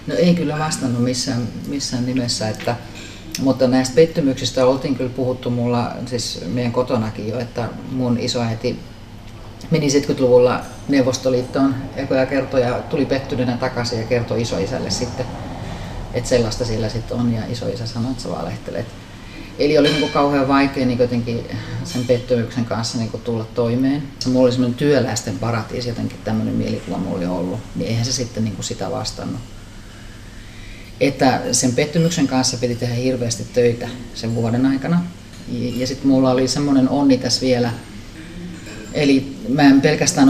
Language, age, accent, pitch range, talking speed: Finnish, 30-49, native, 115-130 Hz, 150 wpm